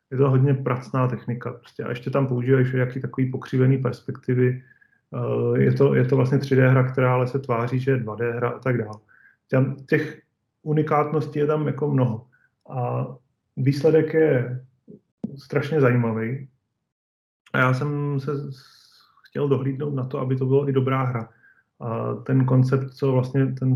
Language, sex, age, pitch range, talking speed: Slovak, male, 30-49, 125-135 Hz, 160 wpm